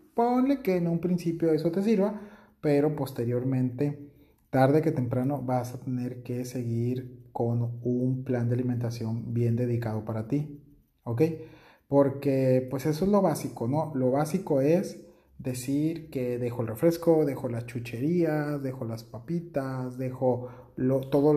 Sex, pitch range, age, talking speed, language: male, 120-150 Hz, 40-59, 145 wpm, Spanish